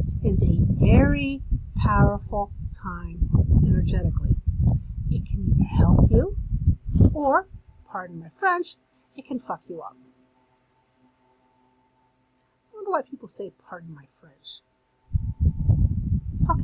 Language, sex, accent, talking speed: English, female, American, 105 wpm